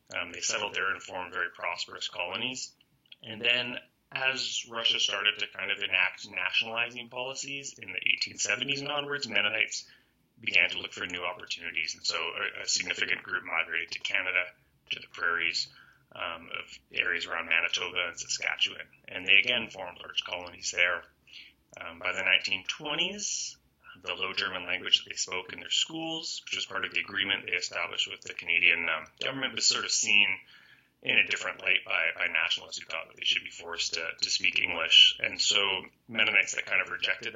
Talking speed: 185 wpm